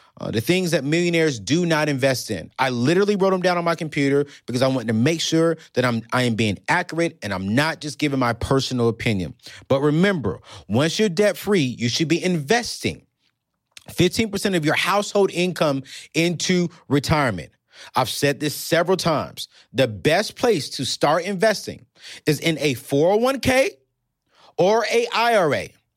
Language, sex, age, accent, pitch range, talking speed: English, male, 30-49, American, 140-200 Hz, 165 wpm